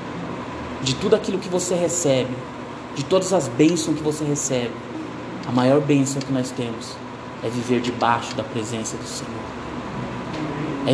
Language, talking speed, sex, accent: Portuguese, 150 wpm, male, Brazilian